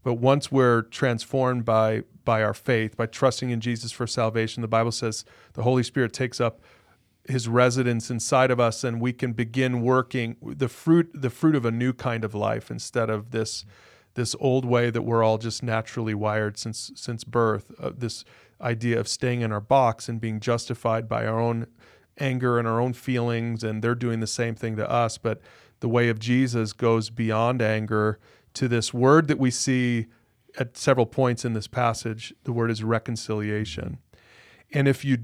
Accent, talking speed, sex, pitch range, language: American, 190 wpm, male, 115-130 Hz, English